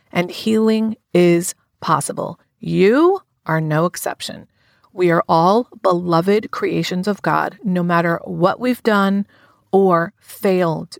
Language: English